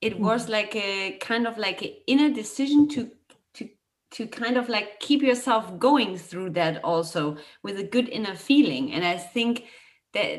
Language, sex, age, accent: German, female, 30-49, German